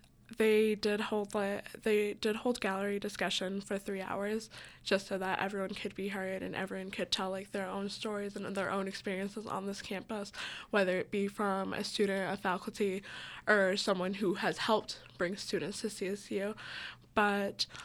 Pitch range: 195-215 Hz